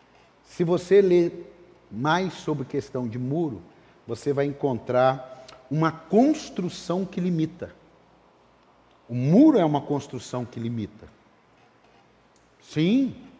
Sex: male